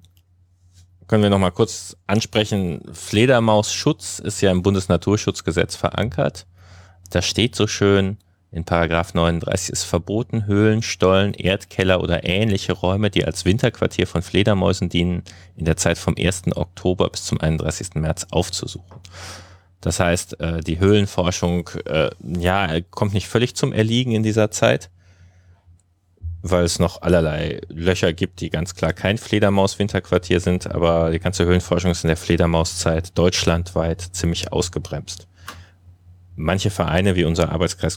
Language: German